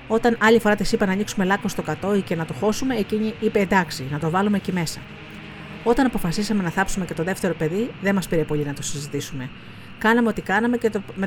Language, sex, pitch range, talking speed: Greek, female, 155-210 Hz, 230 wpm